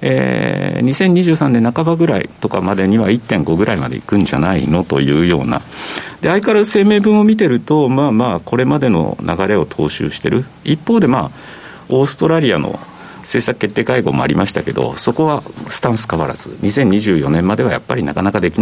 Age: 50-69